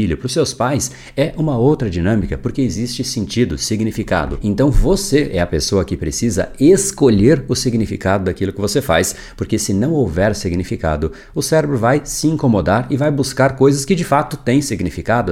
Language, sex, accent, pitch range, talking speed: Portuguese, male, Brazilian, 95-130 Hz, 175 wpm